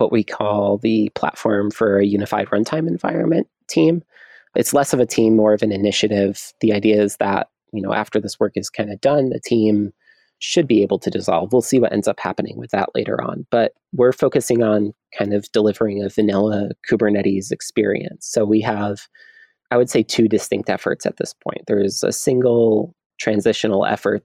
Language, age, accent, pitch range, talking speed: English, 30-49, American, 100-115 Hz, 195 wpm